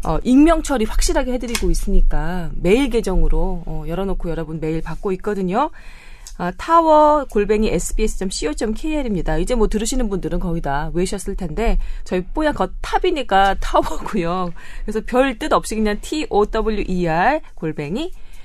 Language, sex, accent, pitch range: Korean, female, native, 160-225 Hz